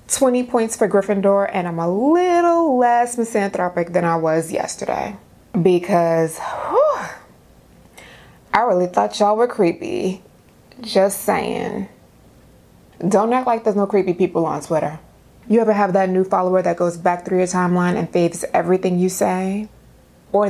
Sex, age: female, 20-39